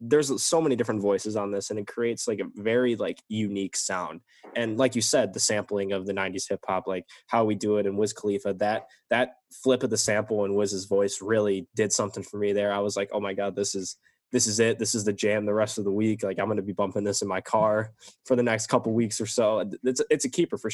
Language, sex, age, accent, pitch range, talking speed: English, male, 10-29, American, 100-125 Hz, 260 wpm